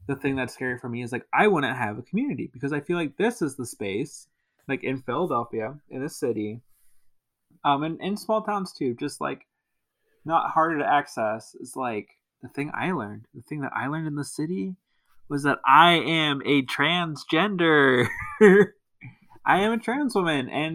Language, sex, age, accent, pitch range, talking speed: English, male, 20-39, American, 120-155 Hz, 190 wpm